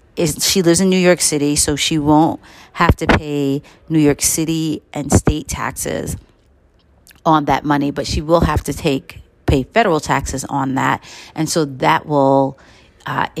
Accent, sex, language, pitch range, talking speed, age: American, female, English, 140-170 Hz, 170 wpm, 40-59